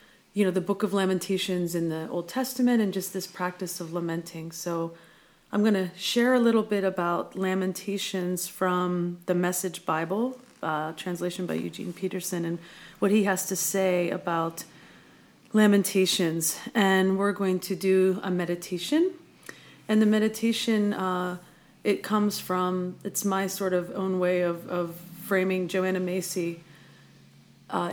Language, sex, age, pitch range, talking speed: English, female, 30-49, 180-200 Hz, 150 wpm